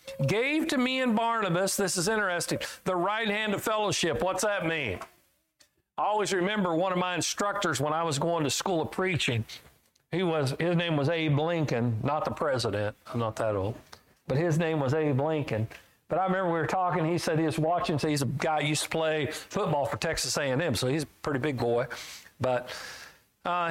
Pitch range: 150-195 Hz